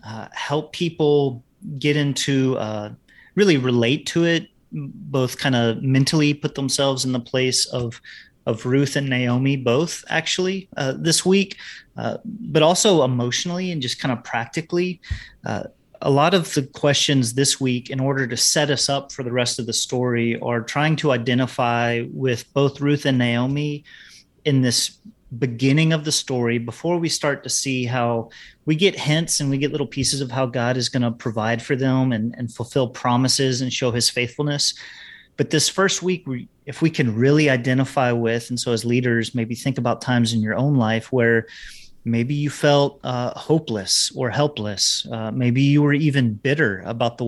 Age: 30-49